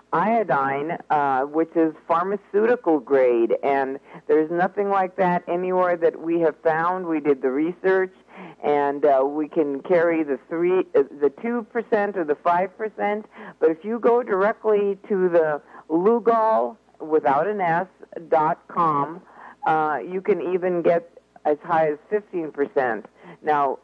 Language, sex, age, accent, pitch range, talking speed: English, female, 50-69, American, 140-180 Hz, 145 wpm